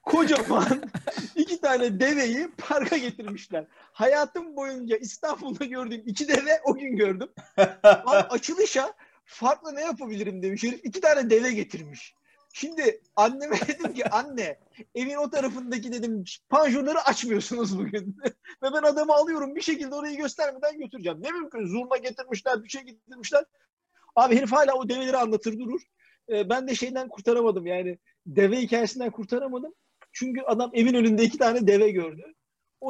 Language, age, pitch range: Turkish, 50-69, 195-270 Hz